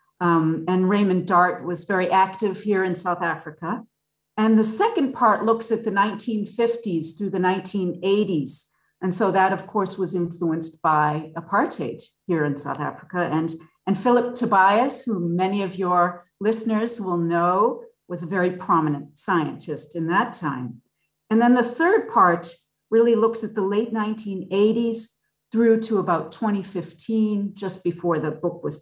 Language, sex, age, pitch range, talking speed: English, female, 50-69, 170-225 Hz, 155 wpm